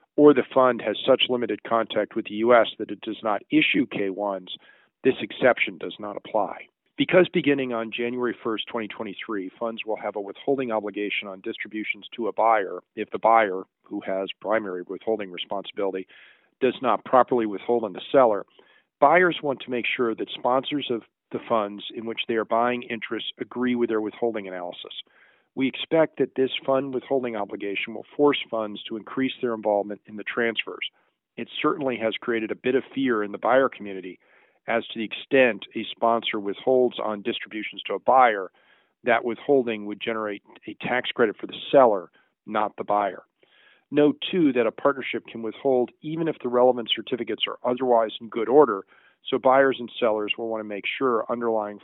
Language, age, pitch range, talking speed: English, 50-69, 105-125 Hz, 180 wpm